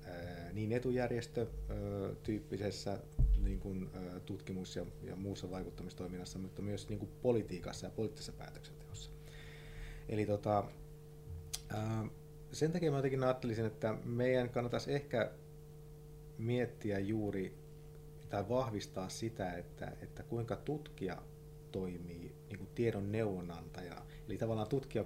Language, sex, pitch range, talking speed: Finnish, male, 100-150 Hz, 105 wpm